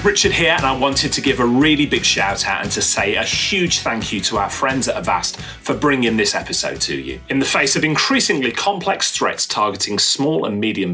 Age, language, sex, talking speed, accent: 30-49, English, male, 225 wpm, British